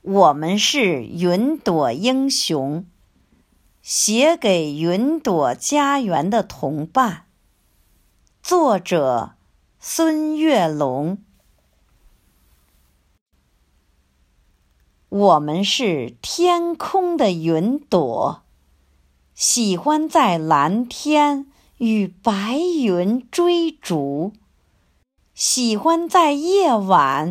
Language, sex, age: Chinese, female, 50-69